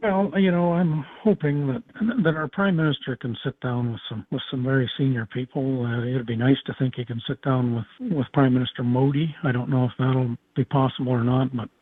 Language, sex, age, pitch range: English, male, 50-69, 120-150 Hz